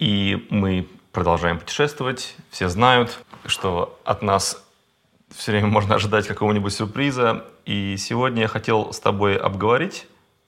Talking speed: 125 wpm